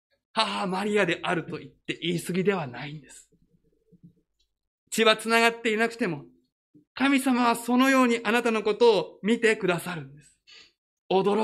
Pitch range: 180-245 Hz